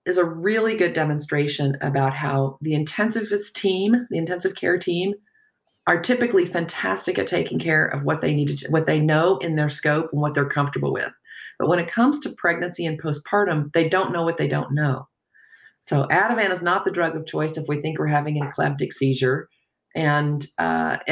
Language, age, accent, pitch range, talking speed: English, 40-59, American, 145-180 Hz, 195 wpm